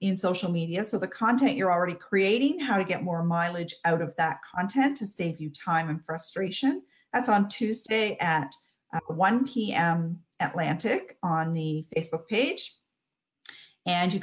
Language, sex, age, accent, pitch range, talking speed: English, female, 40-59, American, 175-230 Hz, 160 wpm